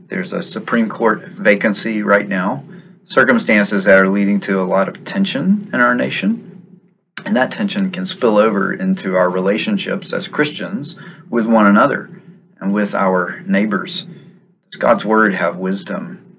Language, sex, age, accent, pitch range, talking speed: English, male, 40-59, American, 115-190 Hz, 155 wpm